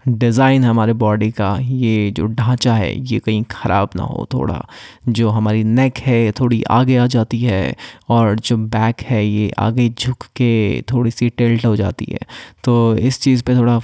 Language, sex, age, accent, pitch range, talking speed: Hindi, male, 20-39, native, 110-125 Hz, 180 wpm